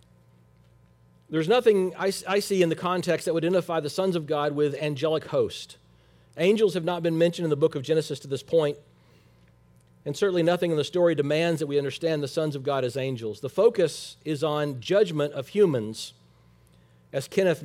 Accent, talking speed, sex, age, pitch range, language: American, 185 wpm, male, 40-59, 105-175 Hz, English